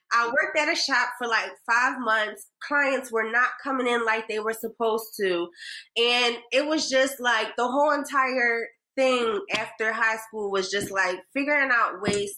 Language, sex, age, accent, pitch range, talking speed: English, female, 20-39, American, 200-270 Hz, 180 wpm